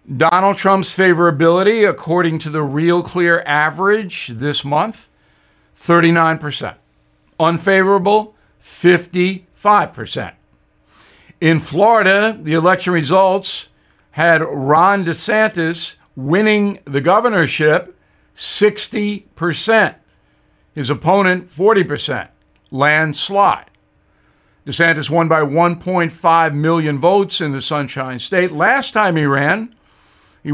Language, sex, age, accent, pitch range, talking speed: English, male, 60-79, American, 145-190 Hz, 90 wpm